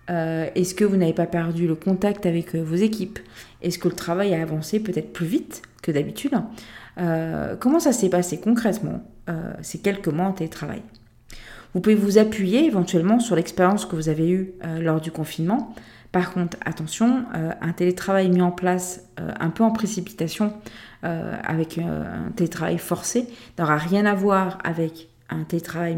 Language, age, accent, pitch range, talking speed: French, 40-59, French, 160-205 Hz, 180 wpm